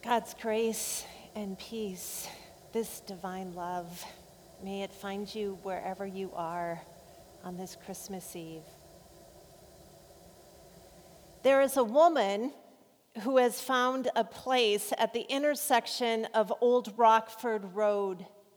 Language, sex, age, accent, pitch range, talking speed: English, female, 40-59, American, 200-245 Hz, 110 wpm